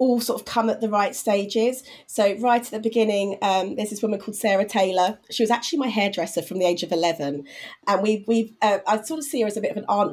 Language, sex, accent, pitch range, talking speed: English, female, British, 195-230 Hz, 265 wpm